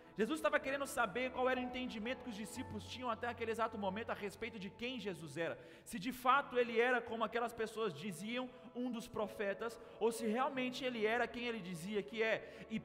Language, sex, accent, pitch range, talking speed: Portuguese, male, Brazilian, 220-290 Hz, 210 wpm